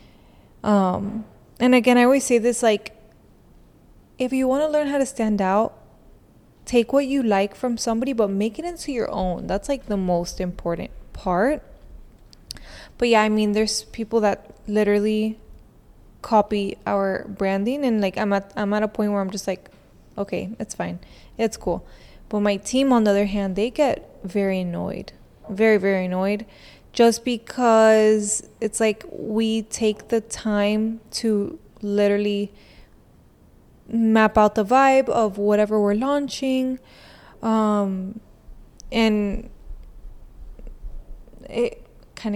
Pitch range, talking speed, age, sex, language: 205-235 Hz, 140 wpm, 20-39, female, English